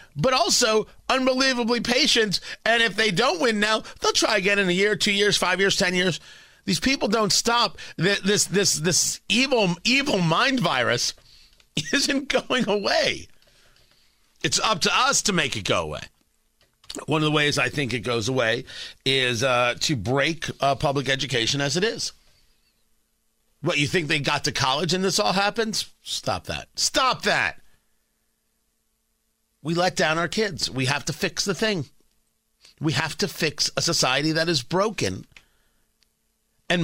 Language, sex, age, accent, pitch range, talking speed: English, male, 50-69, American, 155-225 Hz, 160 wpm